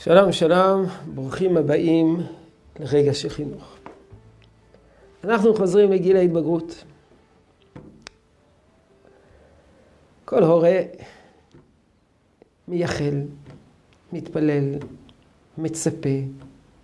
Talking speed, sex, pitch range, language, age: 55 wpm, male, 140-185 Hz, Hebrew, 50-69